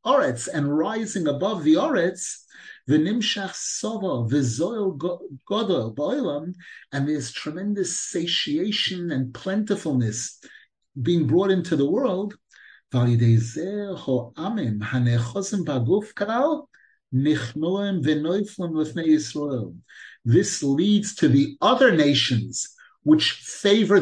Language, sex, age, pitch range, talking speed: English, male, 50-69, 130-190 Hz, 75 wpm